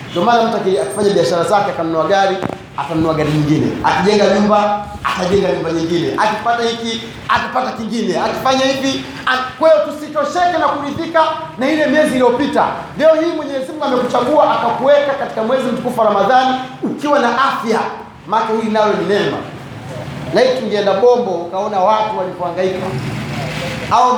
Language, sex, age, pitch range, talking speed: Swahili, male, 30-49, 180-255 Hz, 135 wpm